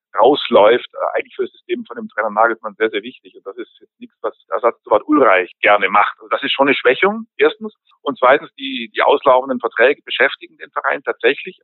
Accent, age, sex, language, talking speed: German, 50-69, male, German, 210 wpm